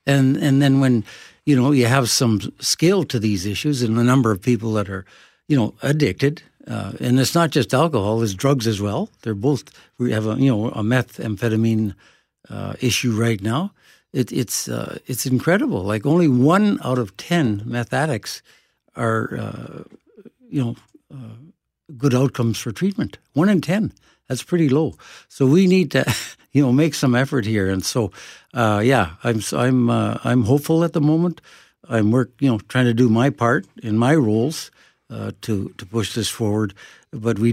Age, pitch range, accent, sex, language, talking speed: 60-79, 105-135 Hz, American, male, English, 185 wpm